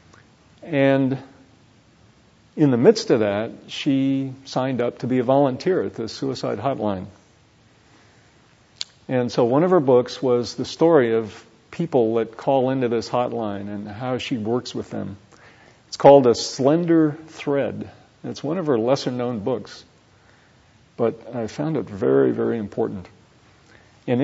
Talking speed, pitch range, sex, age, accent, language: 145 wpm, 110-140 Hz, male, 50-69, American, English